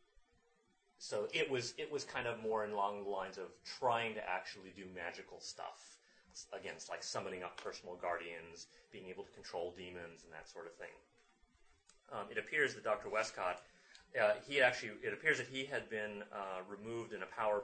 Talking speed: 185 wpm